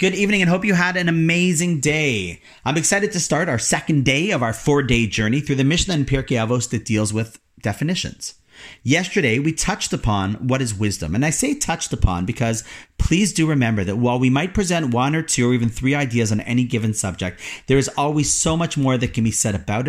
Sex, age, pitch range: male, 40-59, 105-150 Hz